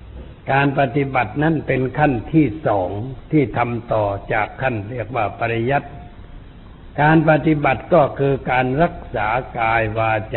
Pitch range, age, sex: 110-145 Hz, 60-79, male